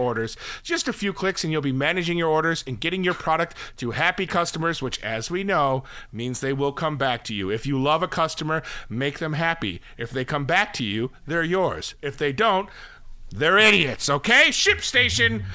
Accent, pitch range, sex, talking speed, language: American, 145-200 Hz, male, 200 wpm, English